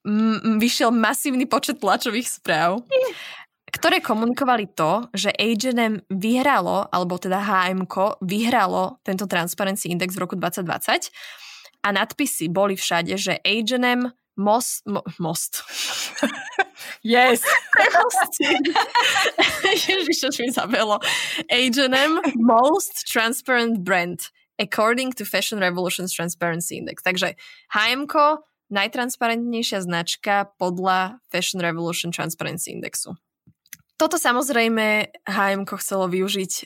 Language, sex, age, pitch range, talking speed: Slovak, female, 20-39, 185-255 Hz, 95 wpm